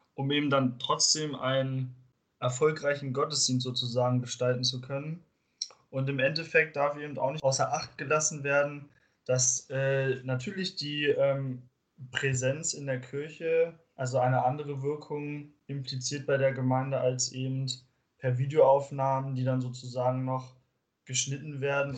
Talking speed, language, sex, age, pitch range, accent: 135 wpm, German, male, 10-29, 125-140 Hz, German